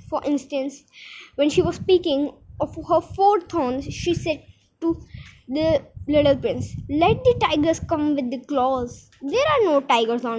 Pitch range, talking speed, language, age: 260-365 Hz, 160 wpm, Hindi, 20-39